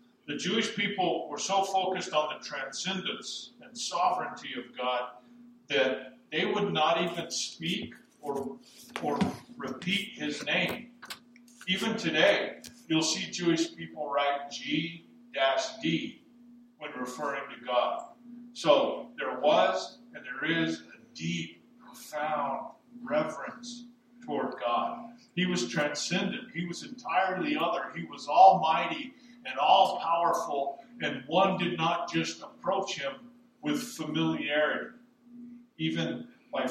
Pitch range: 165-240 Hz